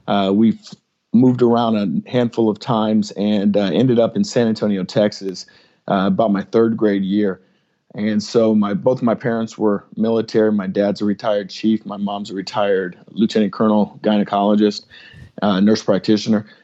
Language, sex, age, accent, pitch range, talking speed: English, male, 40-59, American, 105-120 Hz, 165 wpm